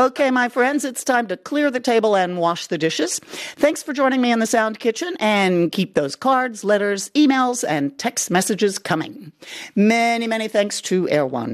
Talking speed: 185 wpm